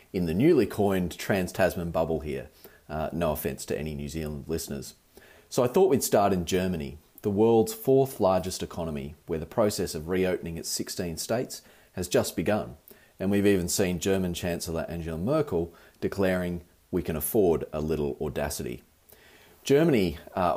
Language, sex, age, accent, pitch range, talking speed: English, male, 30-49, Australian, 80-105 Hz, 160 wpm